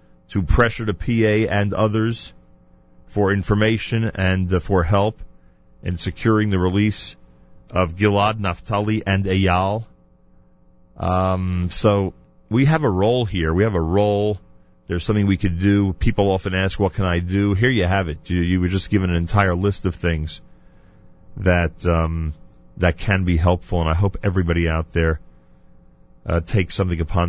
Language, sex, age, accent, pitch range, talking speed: English, male, 40-59, American, 85-105 Hz, 165 wpm